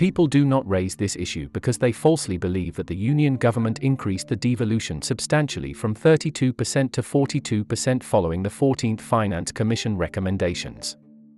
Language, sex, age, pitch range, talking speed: English, male, 40-59, 95-130 Hz, 150 wpm